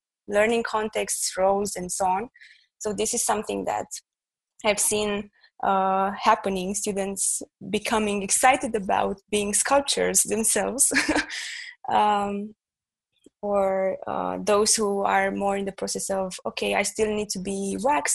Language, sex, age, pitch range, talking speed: English, female, 20-39, 195-220 Hz, 130 wpm